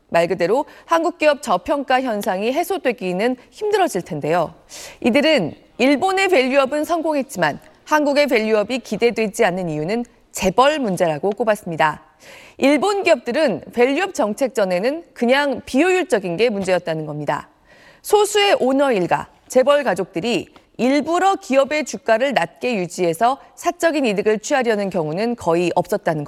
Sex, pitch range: female, 200-300 Hz